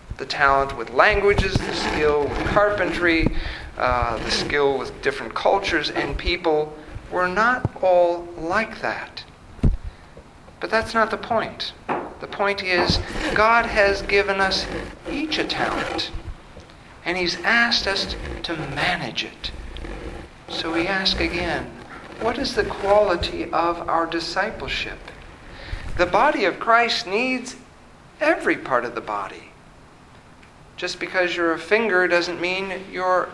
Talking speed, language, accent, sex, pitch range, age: 130 wpm, English, American, male, 165-215 Hz, 50-69